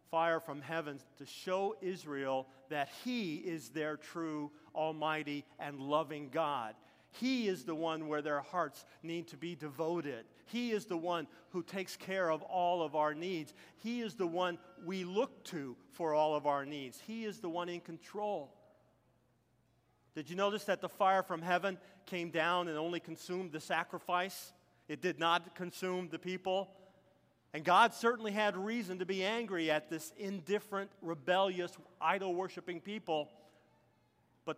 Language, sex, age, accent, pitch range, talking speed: English, male, 50-69, American, 150-185 Hz, 160 wpm